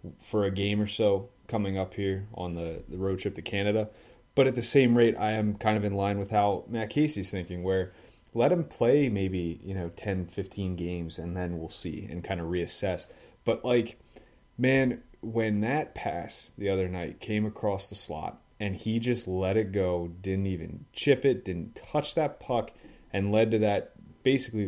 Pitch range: 95-115 Hz